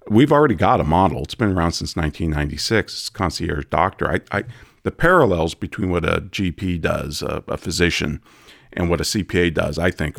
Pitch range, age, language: 80-100 Hz, 50-69, English